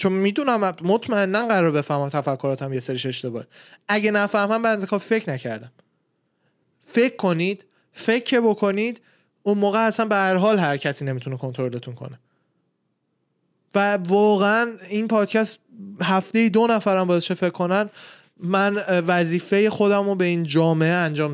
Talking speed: 130 wpm